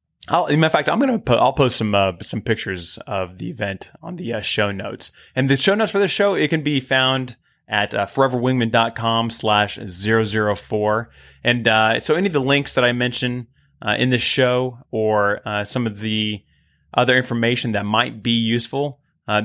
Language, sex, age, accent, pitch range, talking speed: English, male, 20-39, American, 100-125 Hz, 200 wpm